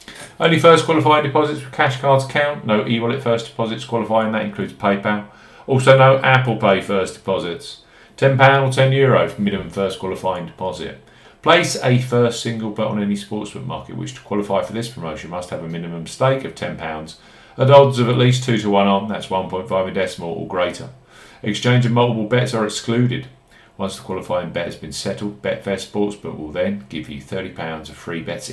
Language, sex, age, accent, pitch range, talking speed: English, male, 40-59, British, 100-130 Hz, 190 wpm